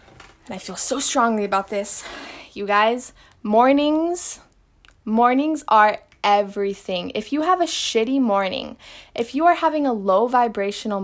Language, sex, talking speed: English, female, 140 wpm